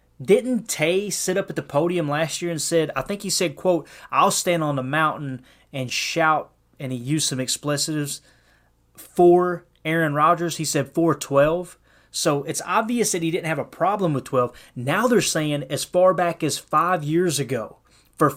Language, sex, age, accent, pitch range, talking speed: English, male, 30-49, American, 140-180 Hz, 185 wpm